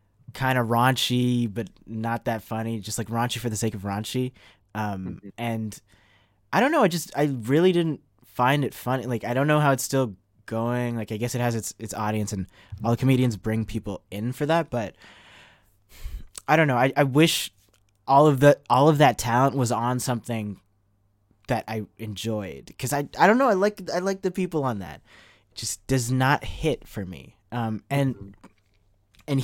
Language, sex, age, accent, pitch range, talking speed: English, male, 20-39, American, 105-135 Hz, 195 wpm